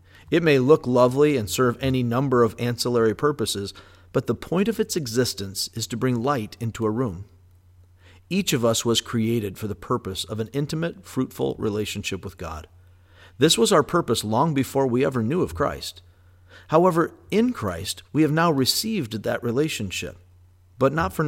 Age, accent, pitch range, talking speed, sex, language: 50-69, American, 95-130 Hz, 175 wpm, male, English